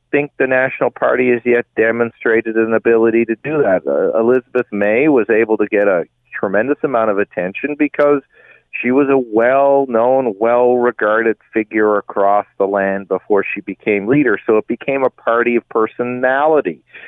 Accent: American